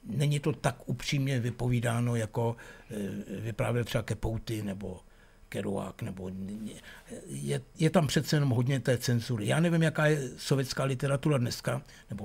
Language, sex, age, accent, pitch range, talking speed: Czech, male, 60-79, native, 110-140 Hz, 135 wpm